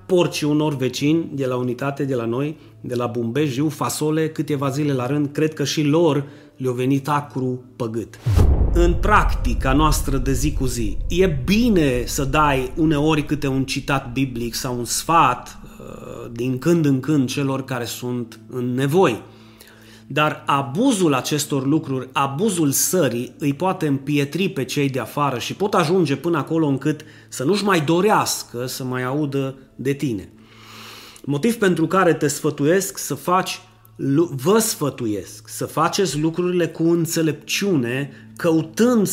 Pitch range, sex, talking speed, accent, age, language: 125-160 Hz, male, 145 wpm, native, 30-49, Romanian